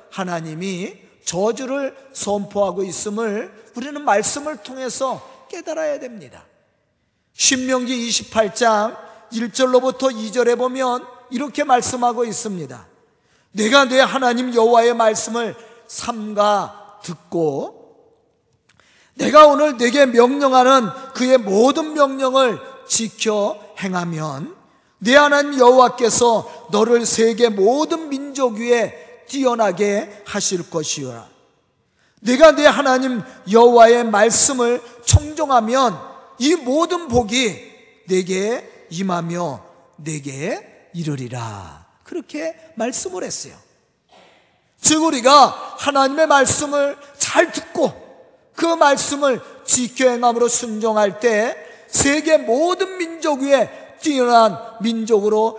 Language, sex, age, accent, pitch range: Korean, male, 40-59, native, 210-275 Hz